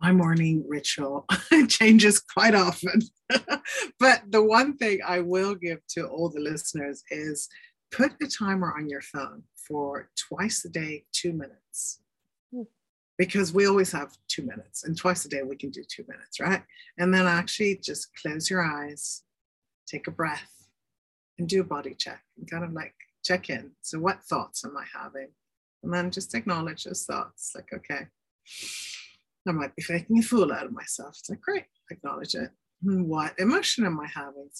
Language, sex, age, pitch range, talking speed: English, female, 40-59, 155-215 Hz, 180 wpm